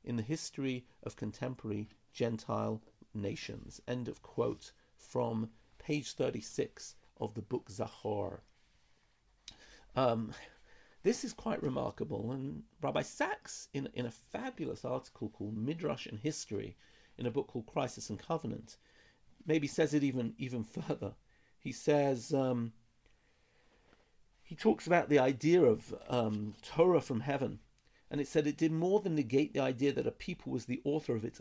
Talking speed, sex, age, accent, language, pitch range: 150 wpm, male, 50-69, British, English, 115-155 Hz